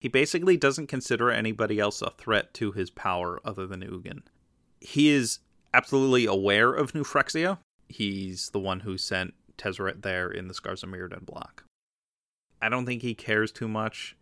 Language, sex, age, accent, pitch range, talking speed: English, male, 30-49, American, 95-120 Hz, 175 wpm